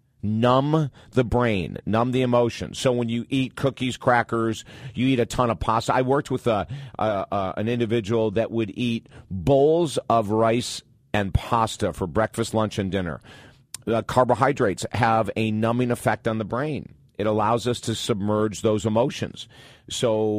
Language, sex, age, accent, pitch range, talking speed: English, male, 50-69, American, 105-125 Hz, 165 wpm